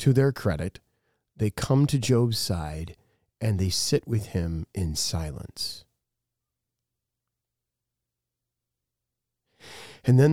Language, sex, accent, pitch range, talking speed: English, male, American, 90-115 Hz, 100 wpm